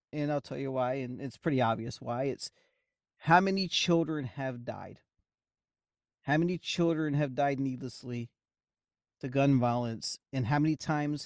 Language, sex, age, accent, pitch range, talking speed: English, male, 40-59, American, 135-175 Hz, 155 wpm